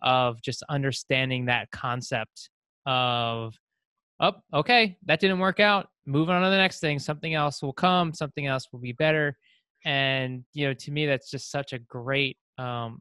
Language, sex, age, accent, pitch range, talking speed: English, male, 20-39, American, 125-150 Hz, 175 wpm